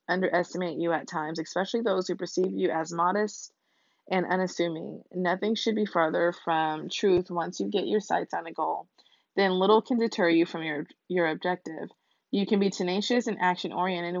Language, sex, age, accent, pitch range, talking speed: English, female, 20-39, American, 170-200 Hz, 185 wpm